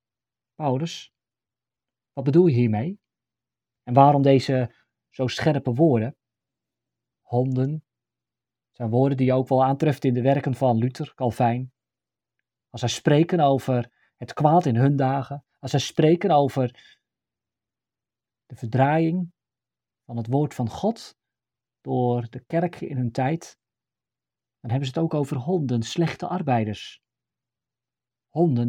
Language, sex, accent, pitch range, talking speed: Dutch, male, Dutch, 125-155 Hz, 130 wpm